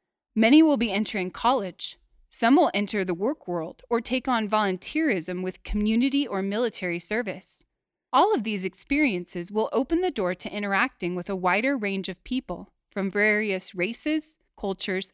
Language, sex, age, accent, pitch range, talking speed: English, female, 20-39, American, 190-275 Hz, 160 wpm